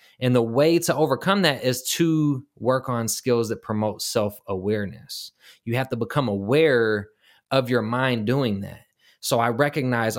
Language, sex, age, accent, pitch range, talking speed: English, male, 20-39, American, 115-140 Hz, 160 wpm